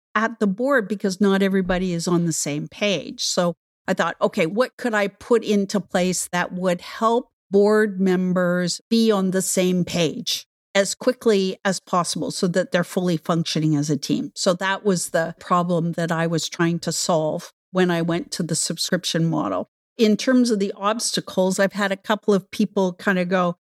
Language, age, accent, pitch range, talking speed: English, 50-69, American, 175-215 Hz, 190 wpm